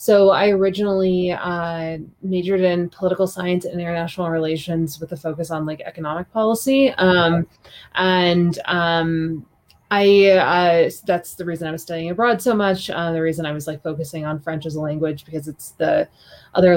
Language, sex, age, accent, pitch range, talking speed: English, female, 20-39, American, 160-185 Hz, 170 wpm